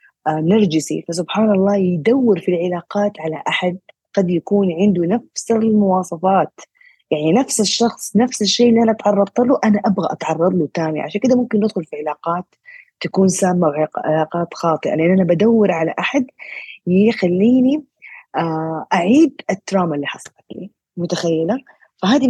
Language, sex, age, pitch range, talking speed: Arabic, female, 20-39, 160-205 Hz, 135 wpm